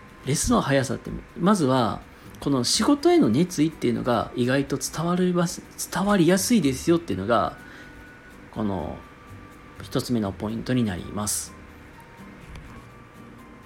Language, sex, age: Japanese, male, 40-59